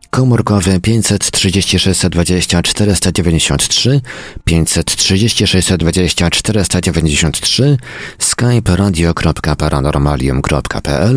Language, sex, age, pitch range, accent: Polish, male, 40-59, 80-100 Hz, native